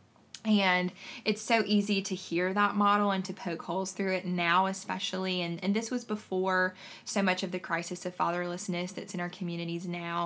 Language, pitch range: English, 175-195 Hz